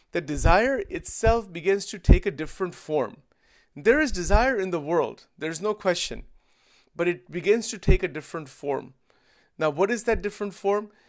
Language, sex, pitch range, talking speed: English, male, 160-210 Hz, 180 wpm